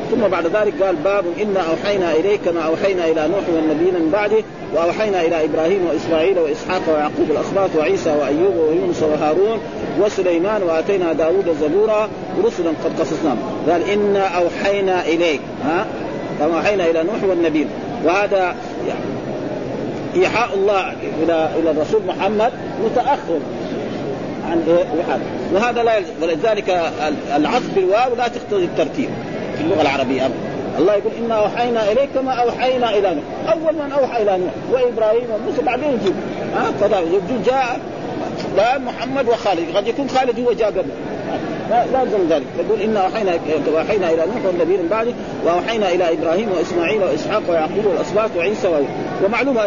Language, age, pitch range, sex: Arabic, 40-59, 170-235 Hz, male